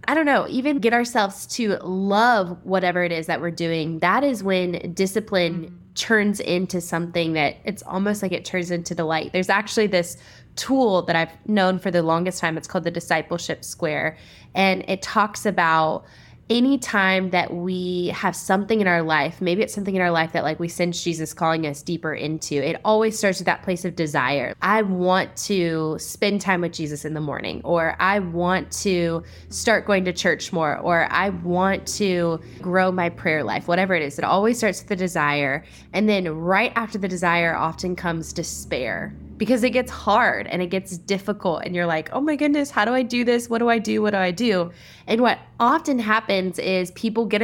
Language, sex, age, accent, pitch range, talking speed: English, female, 10-29, American, 170-205 Hz, 205 wpm